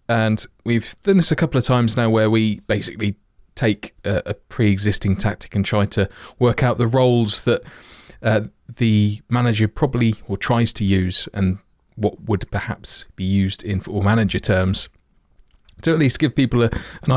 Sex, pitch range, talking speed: male, 100-120 Hz, 170 wpm